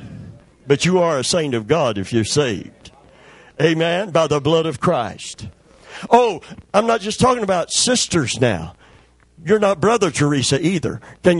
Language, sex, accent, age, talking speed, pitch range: English, male, American, 50-69, 160 wpm, 140-200 Hz